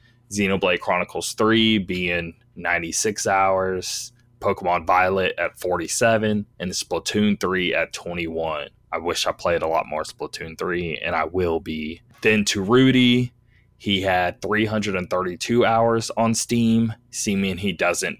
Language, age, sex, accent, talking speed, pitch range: English, 20-39, male, American, 130 wpm, 90-110 Hz